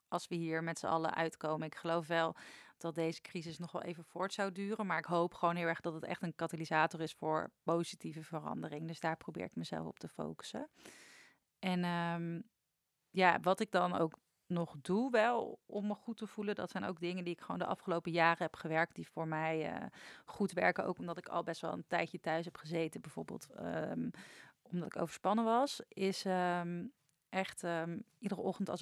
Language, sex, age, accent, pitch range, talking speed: Dutch, female, 30-49, Dutch, 165-185 Hz, 200 wpm